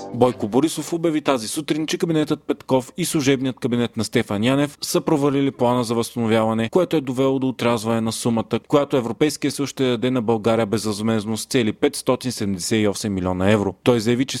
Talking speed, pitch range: 180 wpm, 115-145 Hz